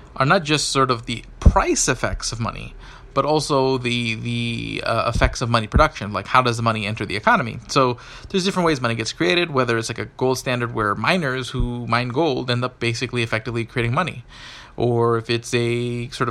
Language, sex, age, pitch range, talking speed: English, male, 30-49, 115-145 Hz, 205 wpm